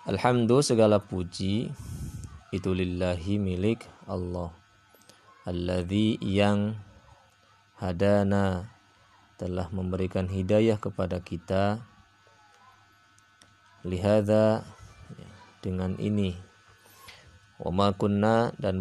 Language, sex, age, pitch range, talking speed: Indonesian, male, 20-39, 95-100 Hz, 65 wpm